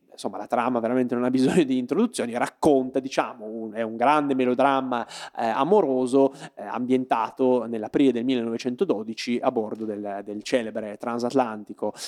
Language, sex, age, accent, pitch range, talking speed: Italian, male, 20-39, native, 115-130 Hz, 145 wpm